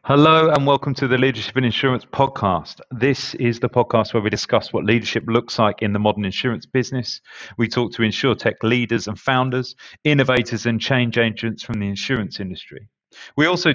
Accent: British